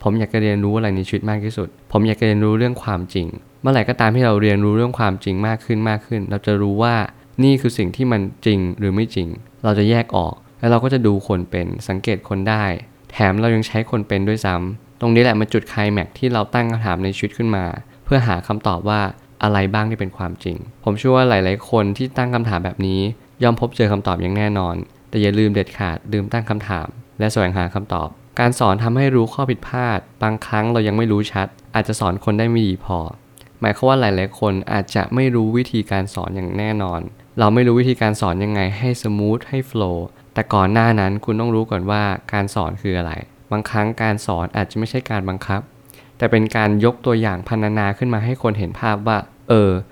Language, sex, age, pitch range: Thai, male, 20-39, 100-120 Hz